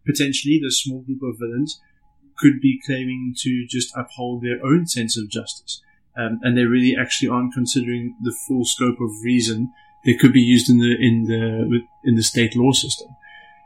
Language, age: English, 30-49